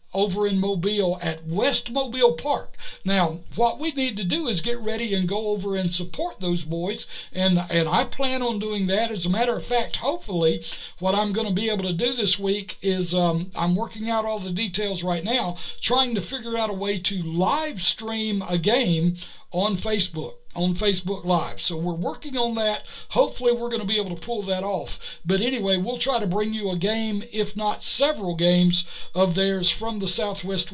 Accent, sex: American, male